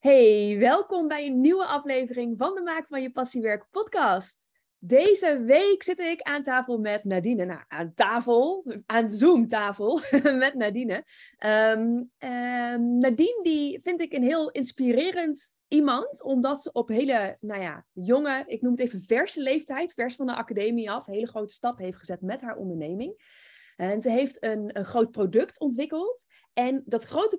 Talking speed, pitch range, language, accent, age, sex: 160 wpm, 215-290 Hz, Dutch, Dutch, 20-39, female